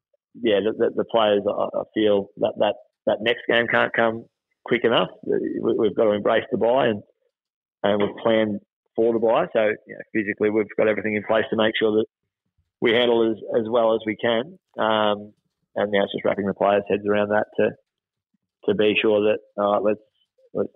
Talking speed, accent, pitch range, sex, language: 195 wpm, Australian, 105-120 Hz, male, English